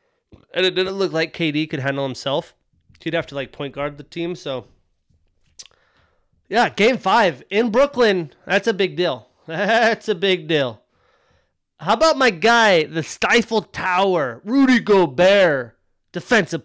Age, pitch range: 30-49, 155-200 Hz